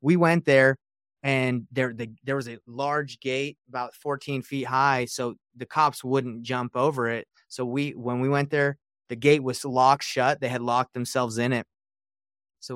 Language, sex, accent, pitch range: English, male, American, 120-140 Hz